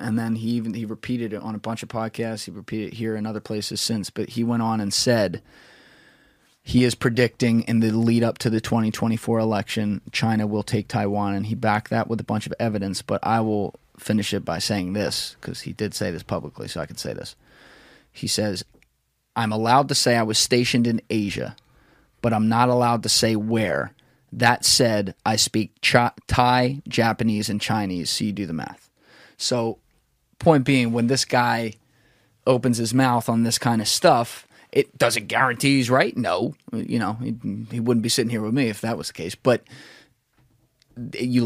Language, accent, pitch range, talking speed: English, American, 110-120 Hz, 200 wpm